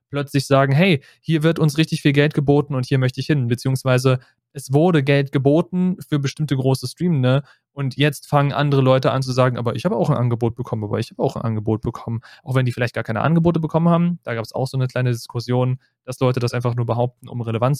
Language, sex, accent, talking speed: German, male, German, 245 wpm